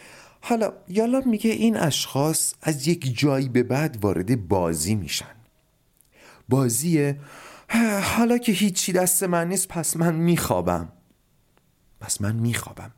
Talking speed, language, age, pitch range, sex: 120 wpm, Persian, 30-49, 105-170 Hz, male